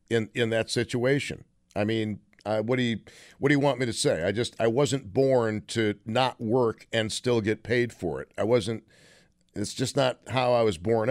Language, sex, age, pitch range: English, male, 50-69, 105-130 Hz